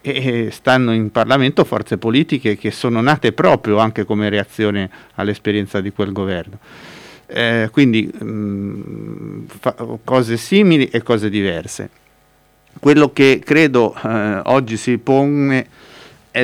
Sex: male